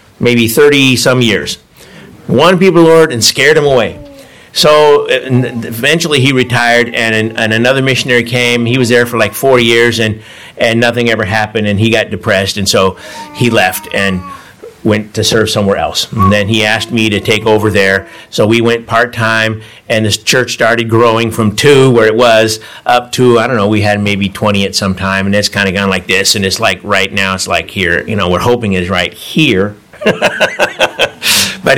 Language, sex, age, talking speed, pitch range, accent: English, male, 50-69, 200 wpm, 105-125 Hz, American